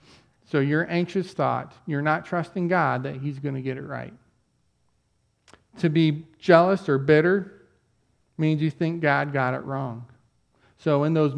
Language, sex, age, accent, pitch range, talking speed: English, male, 40-59, American, 135-160 Hz, 160 wpm